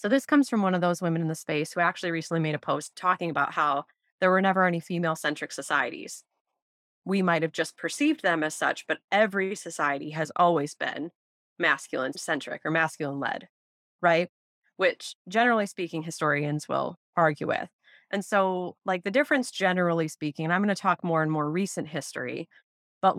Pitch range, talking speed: 155-185 Hz, 185 wpm